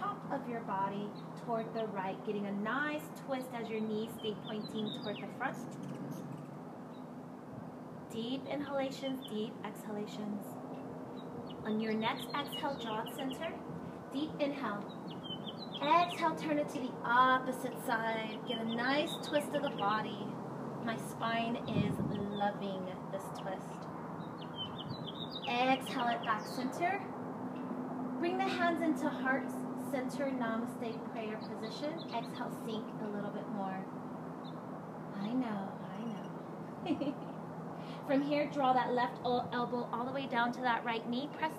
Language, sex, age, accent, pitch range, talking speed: English, female, 30-49, American, 220-280 Hz, 125 wpm